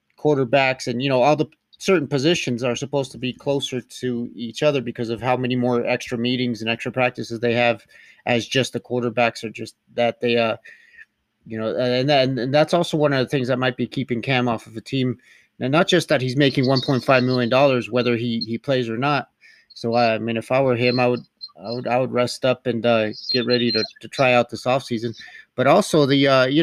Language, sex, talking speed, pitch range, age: English, male, 230 wpm, 120-135 Hz, 30-49